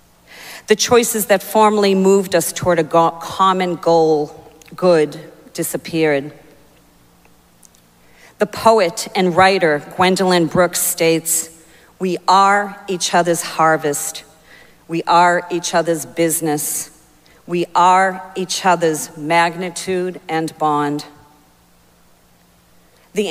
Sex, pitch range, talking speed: female, 160-185 Hz, 95 wpm